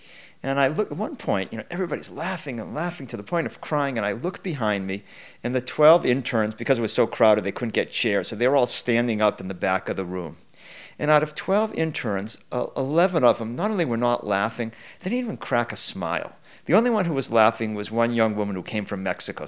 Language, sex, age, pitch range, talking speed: English, male, 50-69, 110-160 Hz, 250 wpm